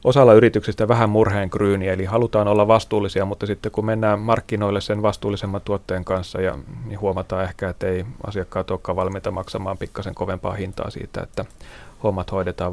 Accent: native